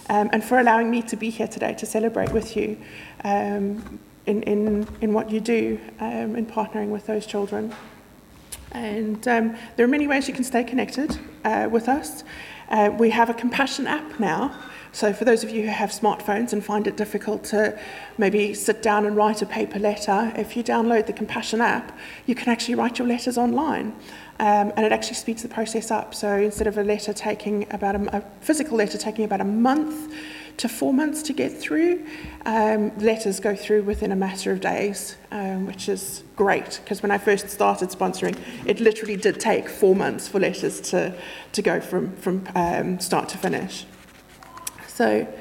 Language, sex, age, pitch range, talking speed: English, female, 30-49, 205-230 Hz, 195 wpm